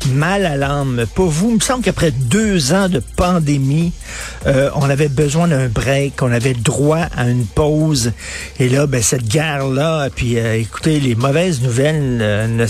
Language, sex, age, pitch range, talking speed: French, male, 50-69, 125-165 Hz, 185 wpm